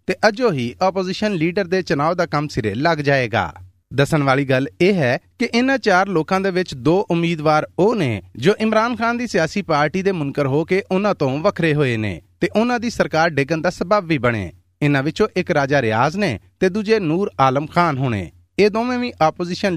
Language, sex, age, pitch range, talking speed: Punjabi, male, 30-49, 140-195 Hz, 205 wpm